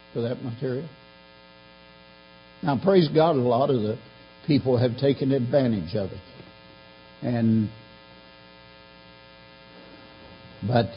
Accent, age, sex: American, 60-79, male